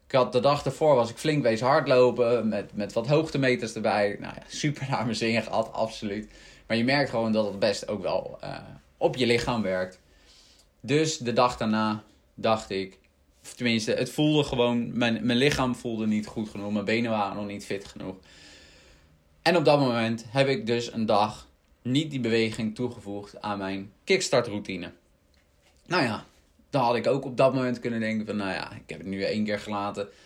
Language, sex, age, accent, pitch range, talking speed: English, male, 20-39, Dutch, 100-125 Hz, 200 wpm